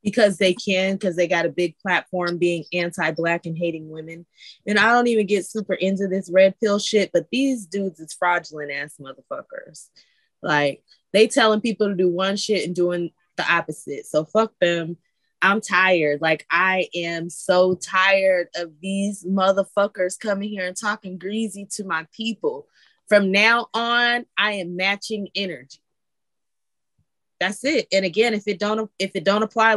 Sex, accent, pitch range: female, American, 180-220 Hz